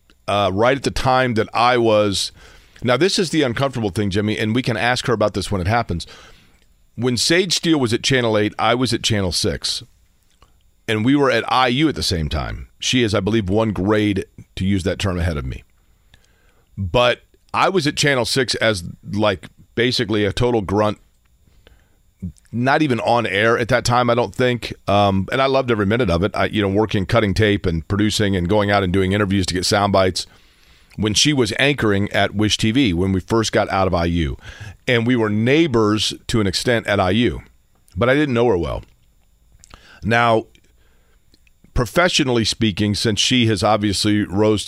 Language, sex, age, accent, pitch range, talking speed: English, male, 40-59, American, 95-120 Hz, 195 wpm